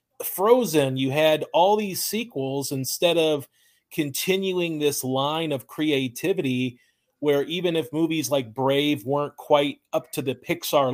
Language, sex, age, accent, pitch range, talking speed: English, male, 30-49, American, 135-165 Hz, 135 wpm